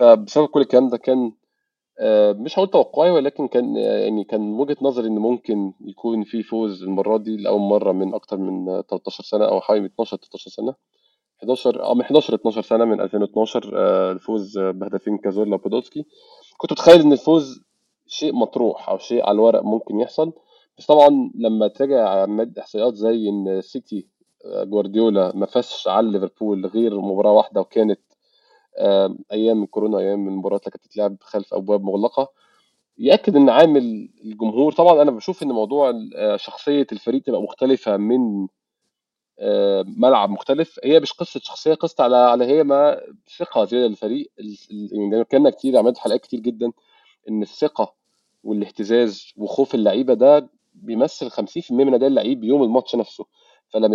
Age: 20-39